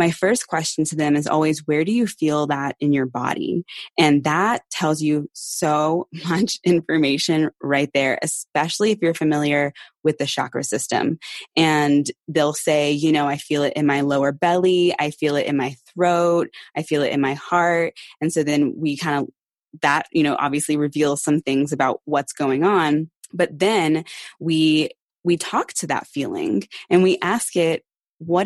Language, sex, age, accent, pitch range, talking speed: English, female, 20-39, American, 145-165 Hz, 180 wpm